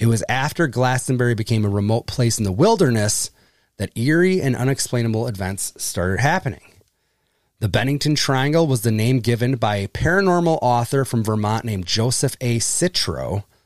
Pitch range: 105-145 Hz